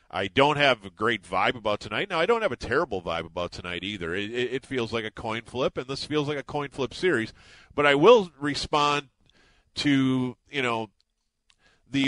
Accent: American